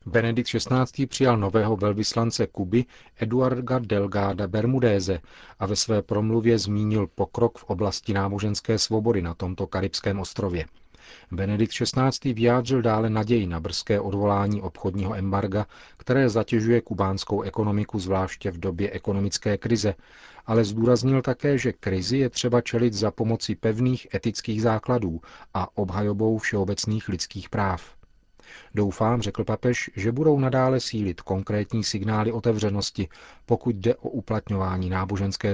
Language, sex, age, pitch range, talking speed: Czech, male, 40-59, 100-115 Hz, 125 wpm